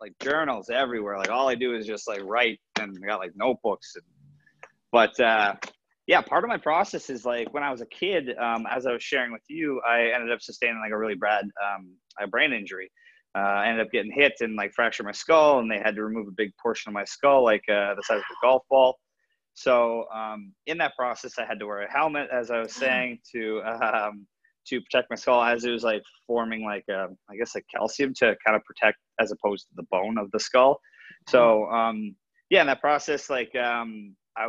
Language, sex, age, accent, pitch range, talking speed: English, male, 30-49, American, 105-125 Hz, 230 wpm